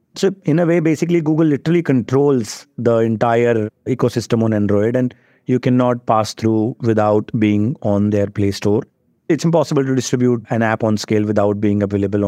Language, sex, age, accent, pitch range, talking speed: English, male, 30-49, Indian, 120-145 Hz, 170 wpm